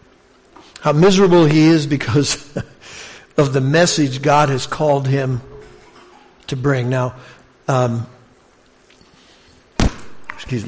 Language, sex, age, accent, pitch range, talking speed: English, male, 60-79, American, 135-175 Hz, 95 wpm